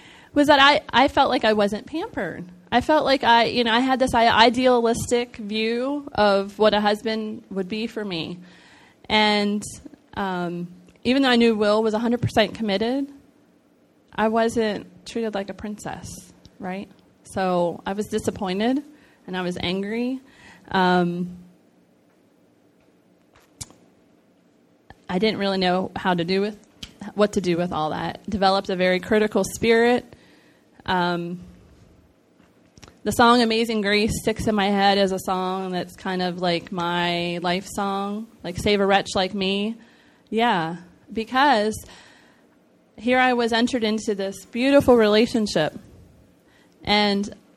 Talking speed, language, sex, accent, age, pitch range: 140 wpm, English, female, American, 30-49, 185-230 Hz